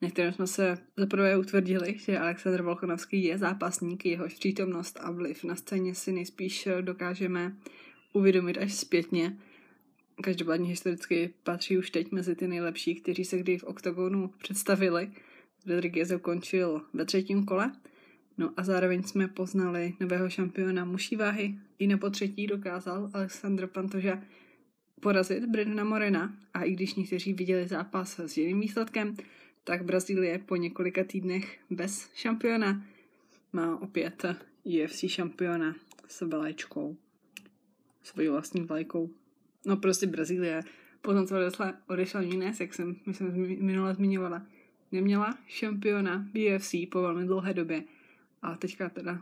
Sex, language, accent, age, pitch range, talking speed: female, Czech, native, 20-39, 175-195 Hz, 130 wpm